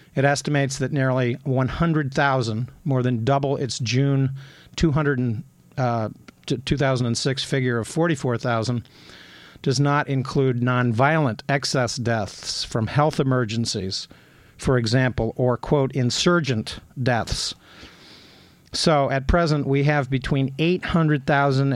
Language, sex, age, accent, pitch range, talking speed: English, male, 50-69, American, 120-140 Hz, 100 wpm